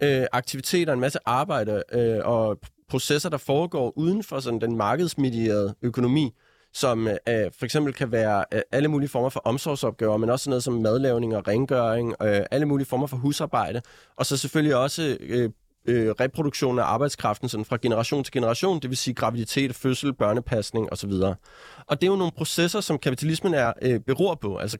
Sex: male